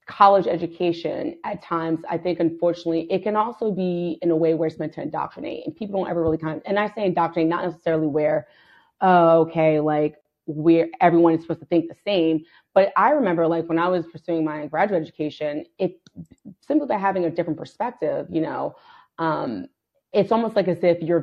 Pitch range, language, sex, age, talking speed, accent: 160-190 Hz, English, female, 30-49, 205 wpm, American